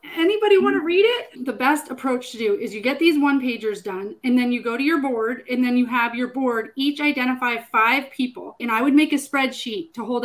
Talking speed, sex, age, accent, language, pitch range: 245 wpm, female, 30-49, American, English, 235-275 Hz